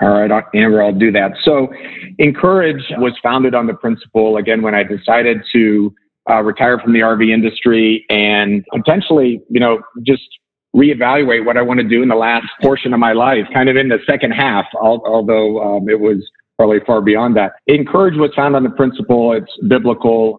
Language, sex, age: English, male, 50-69